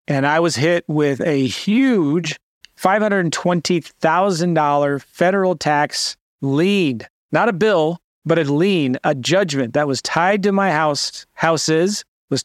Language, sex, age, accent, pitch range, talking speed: English, male, 30-49, American, 140-175 Hz, 130 wpm